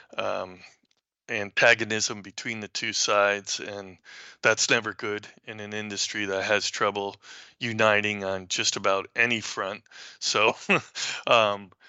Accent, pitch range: American, 95-110 Hz